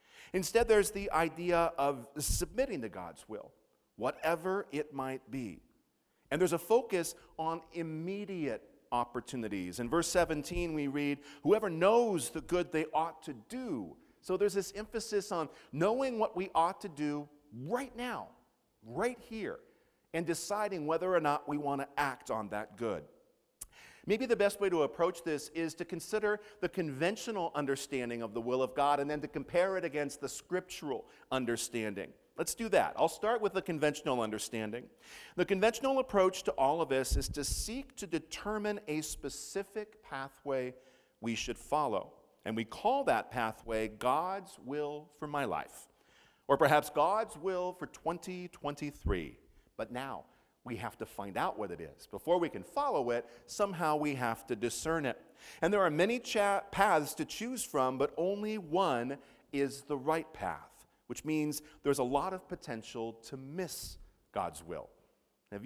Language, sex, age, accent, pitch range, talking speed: English, male, 50-69, American, 140-195 Hz, 165 wpm